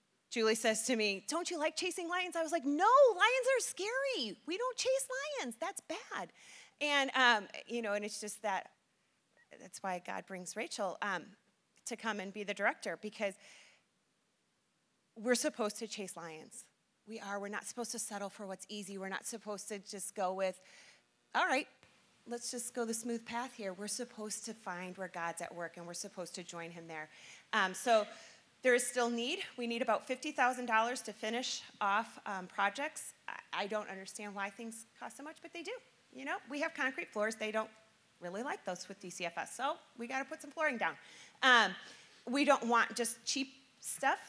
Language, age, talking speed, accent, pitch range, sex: English, 30-49, 195 wpm, American, 195-250 Hz, female